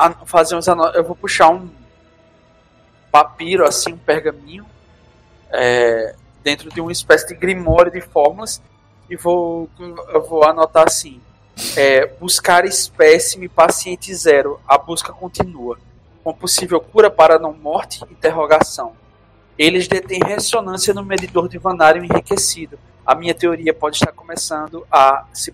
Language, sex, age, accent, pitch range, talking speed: Portuguese, male, 20-39, Brazilian, 155-220 Hz, 130 wpm